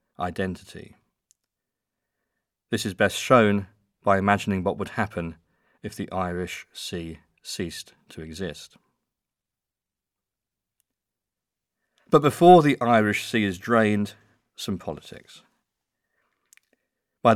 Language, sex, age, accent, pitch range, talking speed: English, male, 40-59, British, 95-115 Hz, 95 wpm